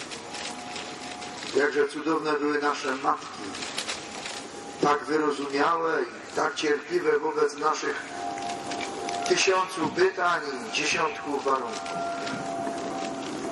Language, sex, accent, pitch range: English, male, Polish, 145-190 Hz